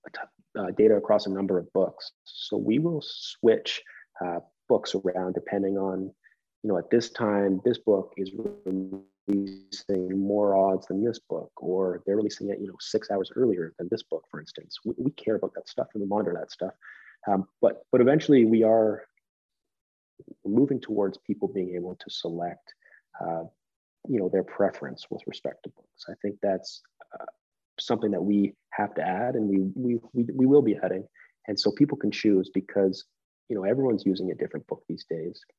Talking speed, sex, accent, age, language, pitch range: 185 wpm, male, American, 30-49, English, 95-110 Hz